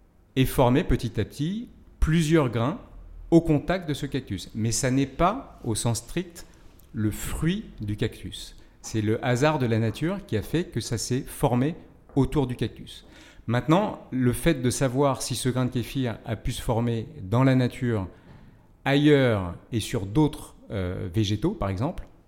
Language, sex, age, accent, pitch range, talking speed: French, male, 40-59, French, 110-140 Hz, 170 wpm